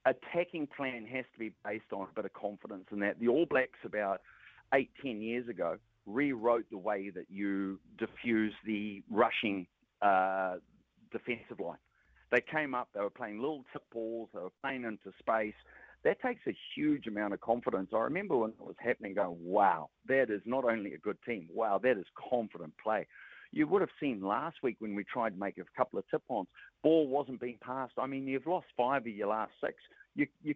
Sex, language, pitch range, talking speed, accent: male, English, 100-140 Hz, 200 wpm, Australian